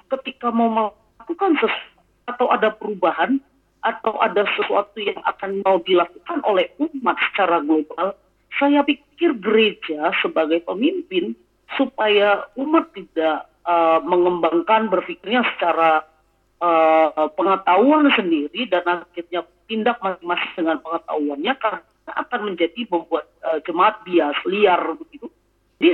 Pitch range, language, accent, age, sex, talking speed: 180-265 Hz, Indonesian, native, 40-59, female, 115 wpm